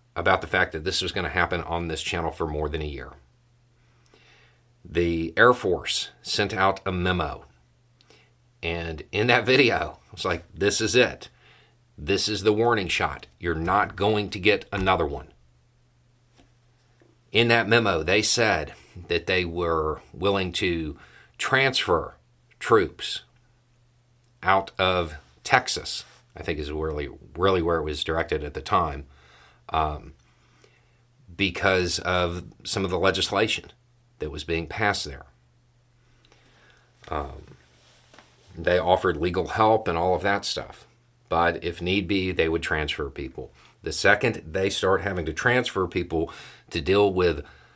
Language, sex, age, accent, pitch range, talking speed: English, male, 40-59, American, 85-120 Hz, 145 wpm